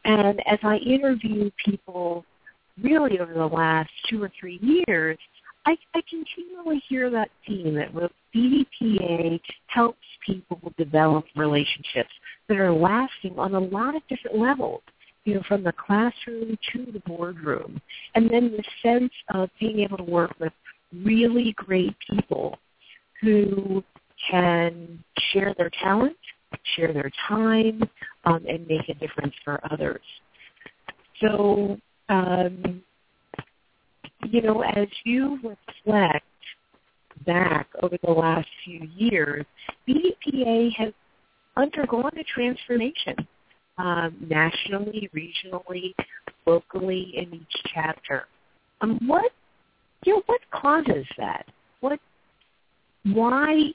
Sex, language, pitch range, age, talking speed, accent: female, English, 170-235 Hz, 50-69, 115 wpm, American